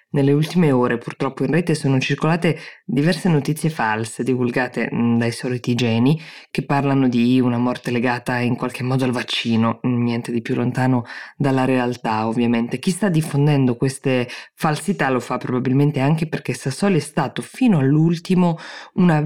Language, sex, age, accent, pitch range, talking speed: Italian, female, 20-39, native, 125-155 Hz, 155 wpm